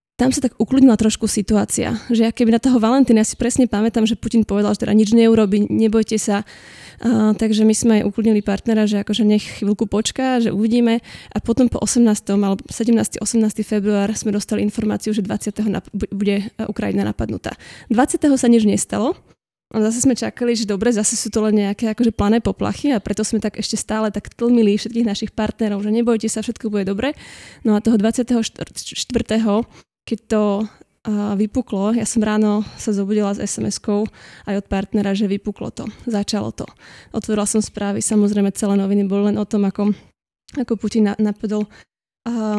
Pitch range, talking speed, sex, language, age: 210-225 Hz, 180 wpm, female, Slovak, 20-39